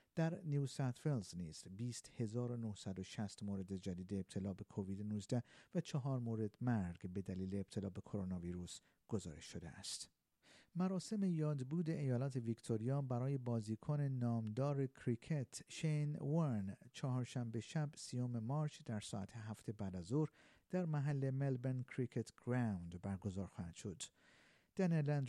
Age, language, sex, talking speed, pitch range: 50-69, Persian, male, 125 wpm, 100-135 Hz